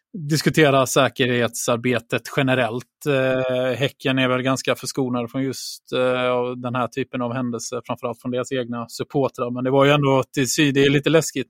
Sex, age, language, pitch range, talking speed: male, 20-39, Swedish, 120-135 Hz, 150 wpm